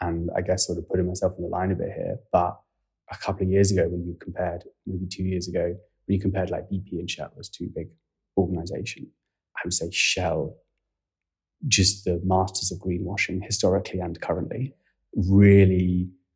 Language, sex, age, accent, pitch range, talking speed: English, male, 20-39, British, 90-100 Hz, 185 wpm